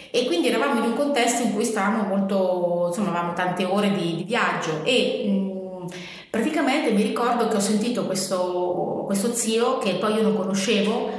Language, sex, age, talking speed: Italian, female, 30-49, 175 wpm